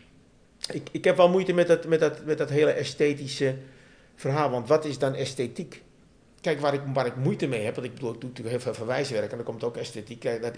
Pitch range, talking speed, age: 120-145 Hz, 240 wpm, 50-69